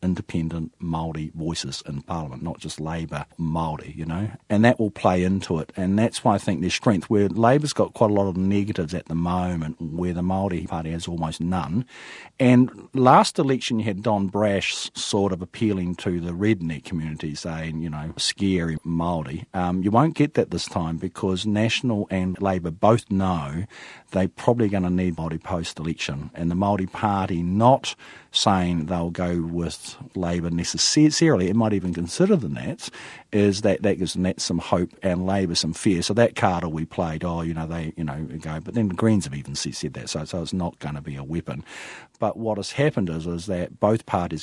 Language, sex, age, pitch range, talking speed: English, male, 50-69, 80-100 Hz, 195 wpm